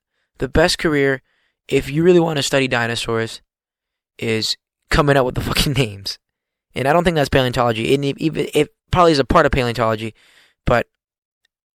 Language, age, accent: English, 20-39, American